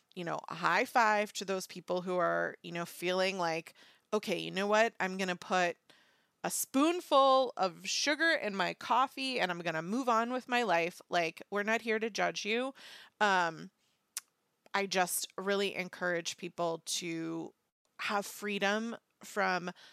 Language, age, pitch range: English, 30-49, 175-210 Hz